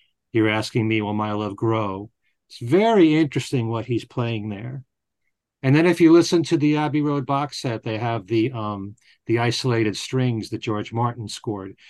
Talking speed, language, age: 180 wpm, English, 40-59